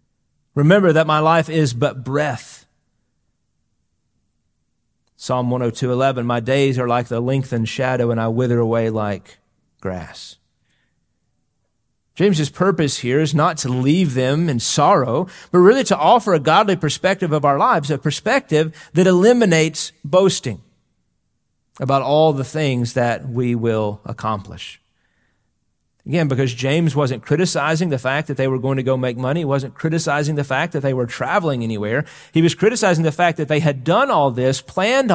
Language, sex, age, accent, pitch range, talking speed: English, male, 40-59, American, 125-160 Hz, 155 wpm